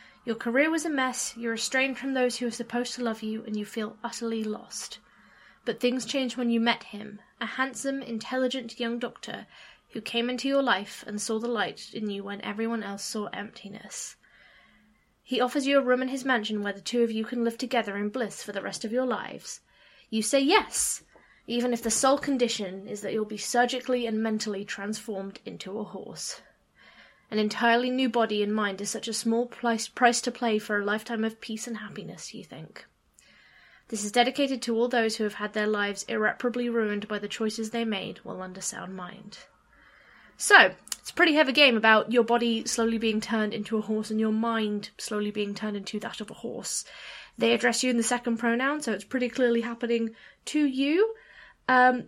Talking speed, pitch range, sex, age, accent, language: 205 wpm, 215-250 Hz, female, 20-39, British, English